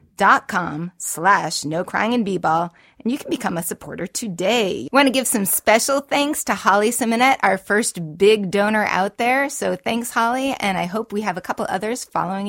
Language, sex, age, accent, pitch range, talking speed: English, female, 30-49, American, 180-230 Hz, 200 wpm